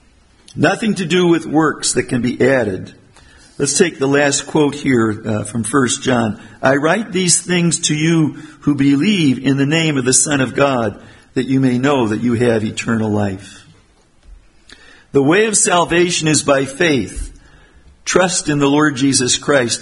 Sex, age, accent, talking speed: male, 50-69, American, 175 wpm